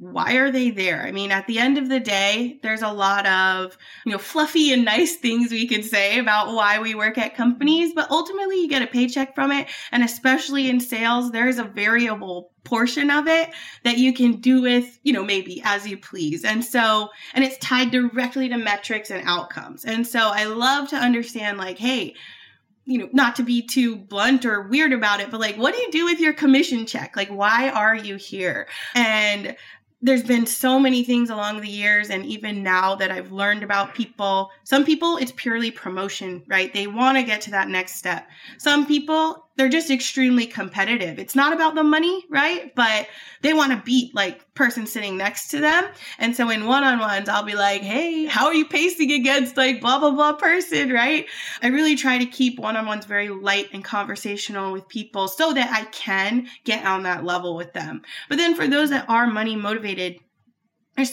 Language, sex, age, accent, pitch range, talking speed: English, female, 20-39, American, 205-270 Hz, 205 wpm